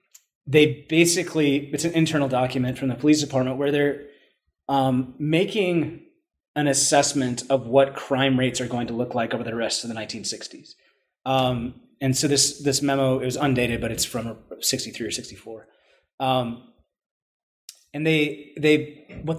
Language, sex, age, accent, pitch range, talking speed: English, male, 30-49, American, 120-150 Hz, 150 wpm